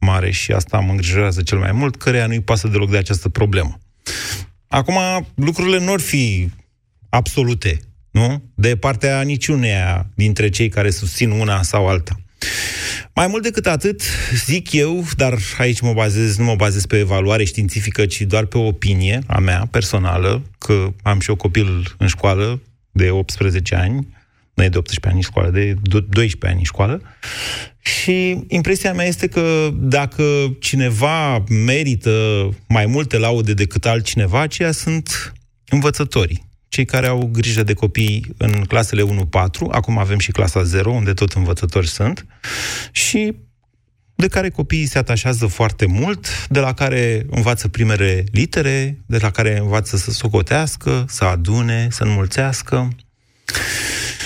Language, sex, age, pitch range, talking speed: Romanian, male, 30-49, 100-130 Hz, 150 wpm